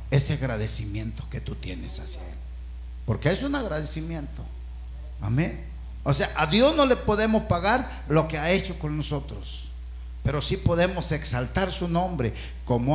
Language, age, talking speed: Spanish, 50-69, 155 wpm